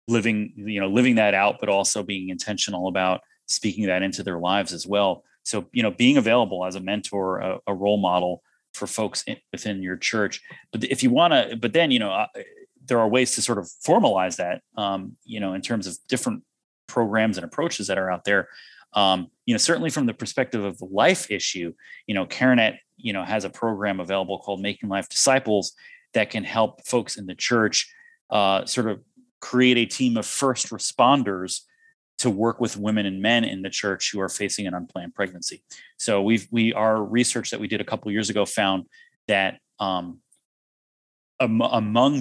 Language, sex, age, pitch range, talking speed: English, male, 30-49, 95-120 Hz, 200 wpm